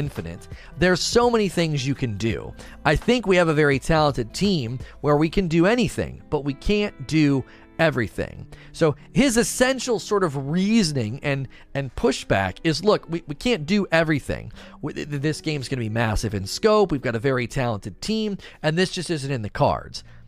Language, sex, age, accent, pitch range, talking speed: English, male, 30-49, American, 135-185 Hz, 185 wpm